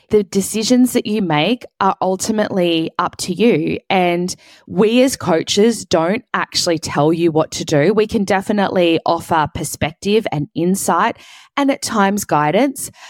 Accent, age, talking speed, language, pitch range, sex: Australian, 20-39, 145 wpm, English, 150-200 Hz, female